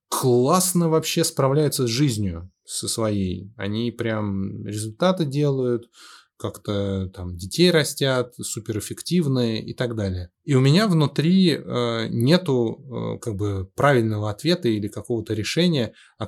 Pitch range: 105-130 Hz